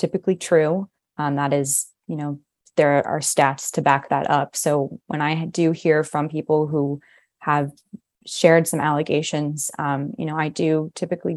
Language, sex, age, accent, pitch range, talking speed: English, female, 20-39, American, 145-160 Hz, 170 wpm